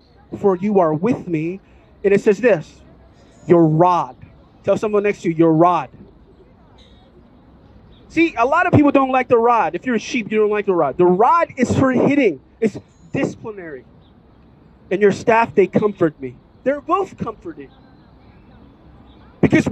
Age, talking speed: 30-49, 160 wpm